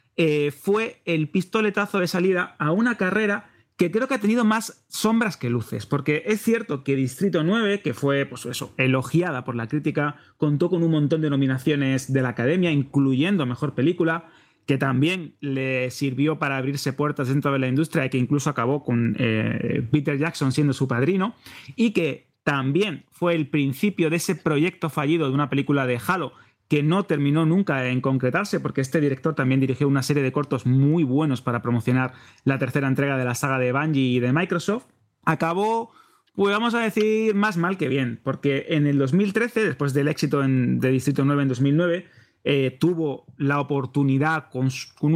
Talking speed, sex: 180 wpm, male